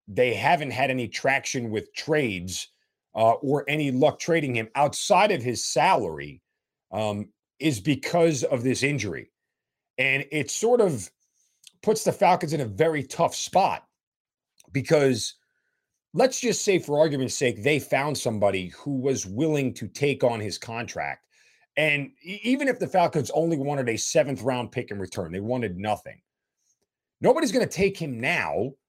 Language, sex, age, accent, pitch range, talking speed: English, male, 40-59, American, 120-170 Hz, 155 wpm